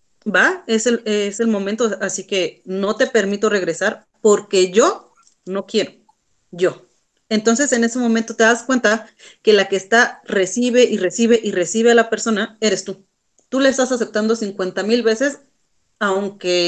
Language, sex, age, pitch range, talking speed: Spanish, female, 30-49, 210-245 Hz, 165 wpm